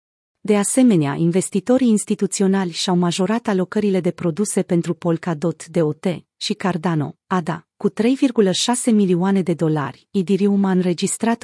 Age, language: 30-49, Romanian